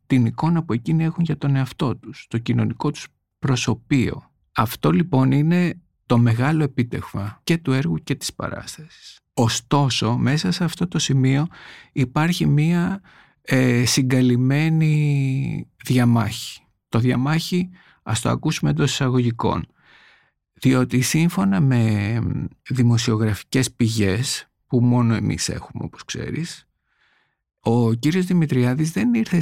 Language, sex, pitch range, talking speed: Greek, male, 120-175 Hz, 120 wpm